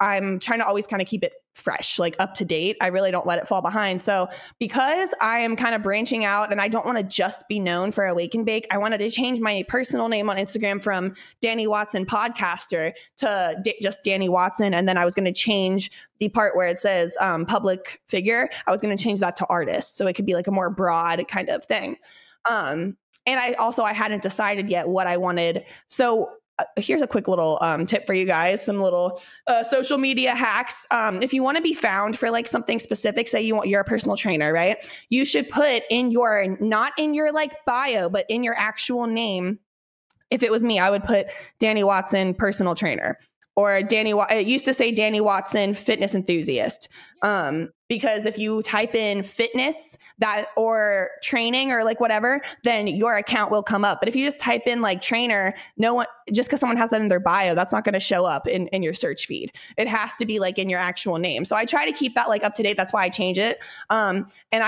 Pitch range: 190-235 Hz